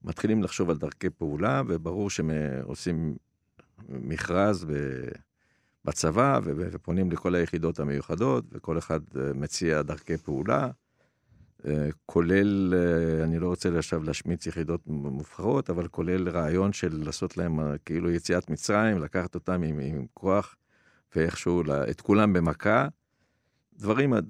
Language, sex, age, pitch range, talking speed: Hebrew, male, 50-69, 80-95 Hz, 110 wpm